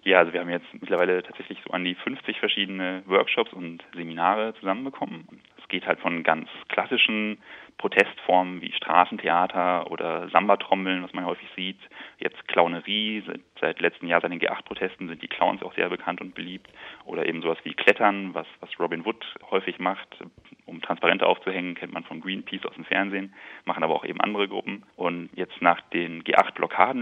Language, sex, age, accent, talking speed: German, male, 30-49, German, 175 wpm